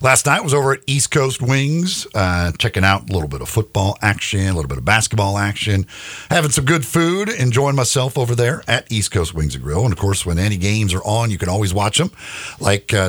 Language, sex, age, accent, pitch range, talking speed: English, male, 50-69, American, 95-115 Hz, 240 wpm